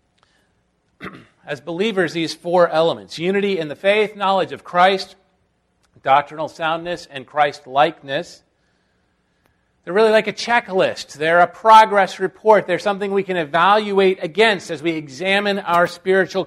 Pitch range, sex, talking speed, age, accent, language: 130-195 Hz, male, 130 wpm, 40-59, American, English